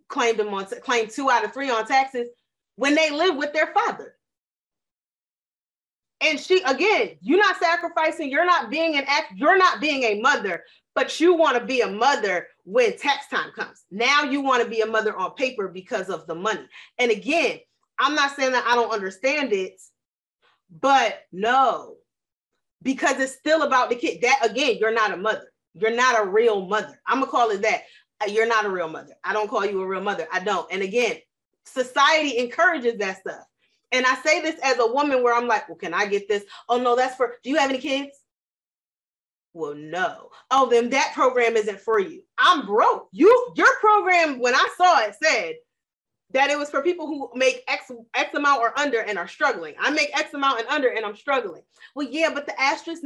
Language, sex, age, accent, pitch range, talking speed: English, female, 30-49, American, 230-310 Hz, 205 wpm